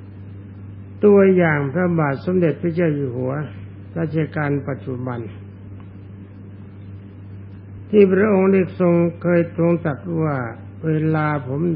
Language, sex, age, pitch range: Thai, male, 60-79, 100-165 Hz